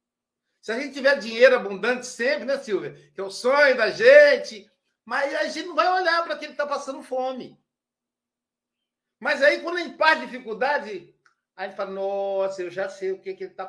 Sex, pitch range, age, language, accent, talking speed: male, 175-280 Hz, 60-79, Portuguese, Brazilian, 200 wpm